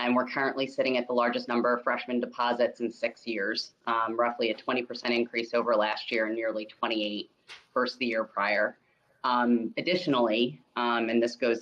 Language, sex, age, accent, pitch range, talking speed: English, female, 30-49, American, 115-125 Hz, 180 wpm